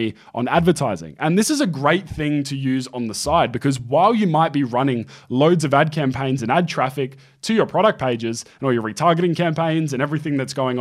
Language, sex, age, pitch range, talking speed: English, male, 20-39, 130-165 Hz, 215 wpm